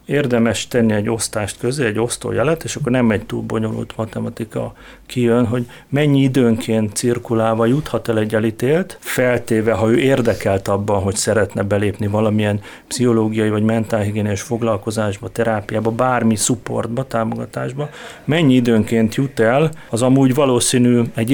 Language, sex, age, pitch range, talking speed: Hungarian, male, 30-49, 110-125 Hz, 135 wpm